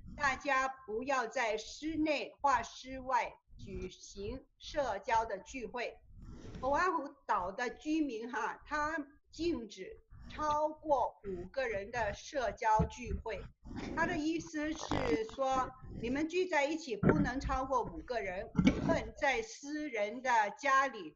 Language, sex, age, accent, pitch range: Chinese, female, 50-69, native, 230-300 Hz